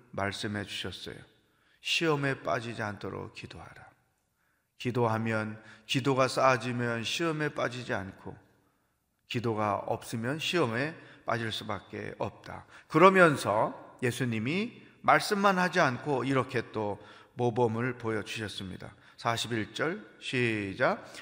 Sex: male